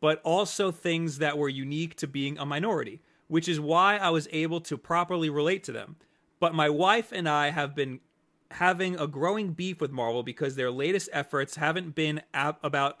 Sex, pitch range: male, 145-180 Hz